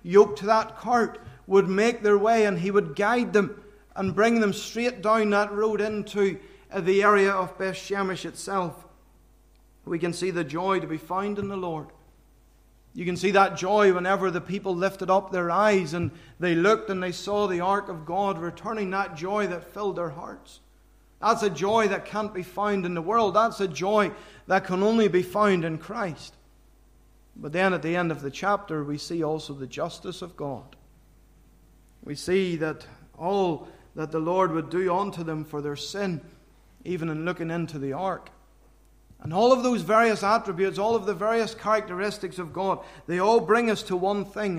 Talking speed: 190 wpm